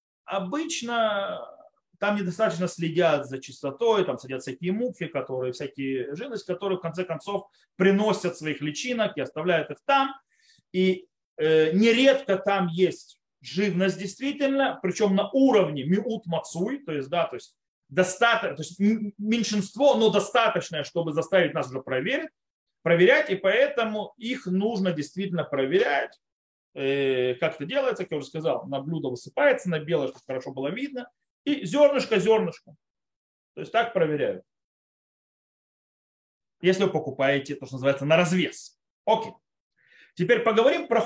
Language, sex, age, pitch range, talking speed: Russian, male, 30-49, 155-230 Hz, 125 wpm